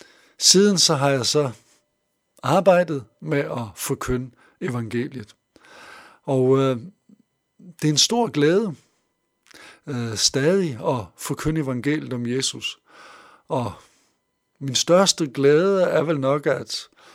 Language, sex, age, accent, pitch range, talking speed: Danish, male, 60-79, native, 125-170 Hz, 110 wpm